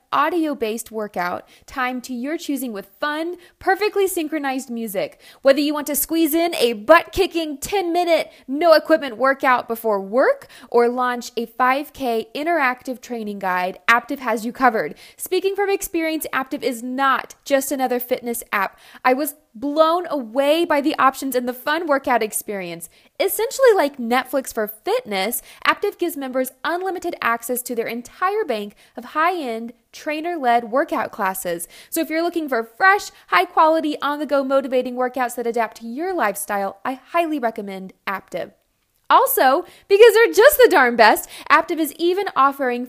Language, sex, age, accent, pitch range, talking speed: English, female, 20-39, American, 230-320 Hz, 150 wpm